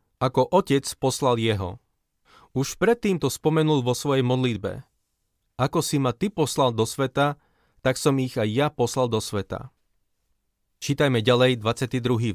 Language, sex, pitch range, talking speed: Slovak, male, 120-150 Hz, 140 wpm